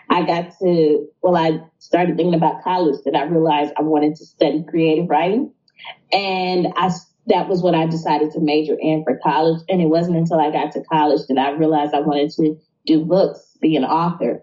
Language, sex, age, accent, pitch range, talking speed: English, female, 20-39, American, 150-175 Hz, 205 wpm